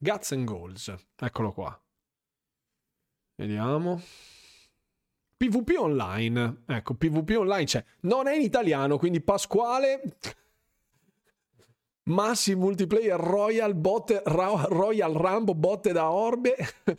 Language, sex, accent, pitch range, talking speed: Italian, male, native, 130-170 Hz, 100 wpm